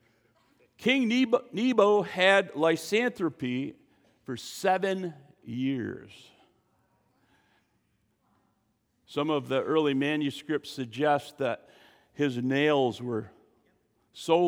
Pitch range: 125-175 Hz